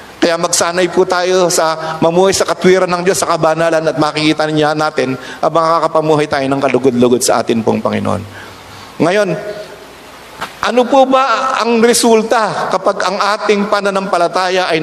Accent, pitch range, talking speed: native, 155-195 Hz, 145 wpm